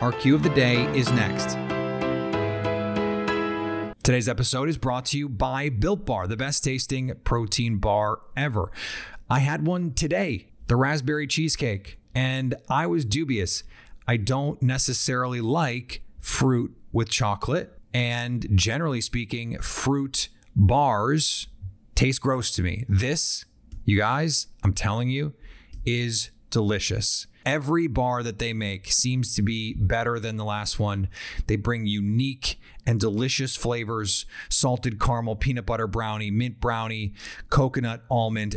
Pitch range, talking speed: 105-130 Hz, 130 wpm